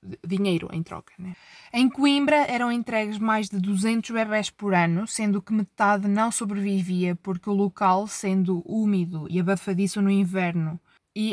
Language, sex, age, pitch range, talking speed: Portuguese, female, 20-39, 180-220 Hz, 155 wpm